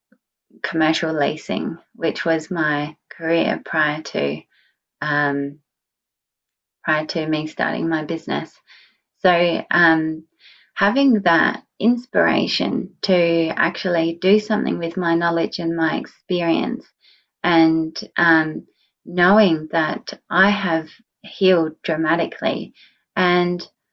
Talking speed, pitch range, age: 100 wpm, 160-190 Hz, 20-39